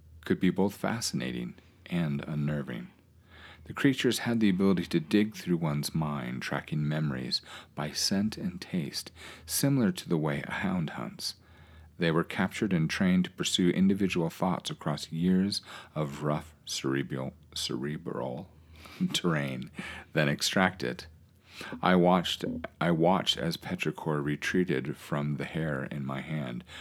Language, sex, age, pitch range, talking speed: English, male, 40-59, 70-95 Hz, 135 wpm